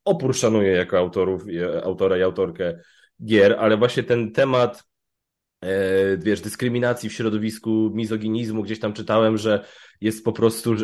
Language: Polish